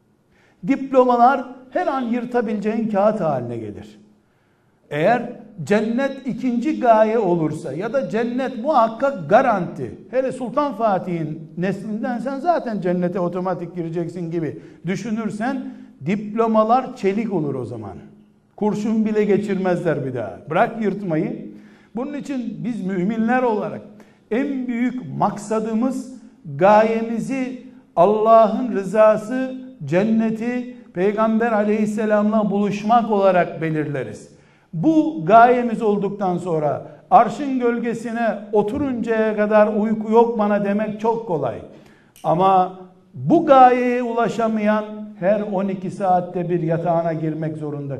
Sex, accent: male, native